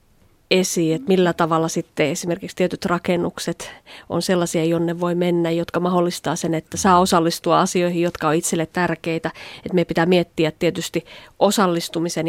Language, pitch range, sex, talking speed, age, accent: Finnish, 165-180 Hz, female, 145 wpm, 30-49, native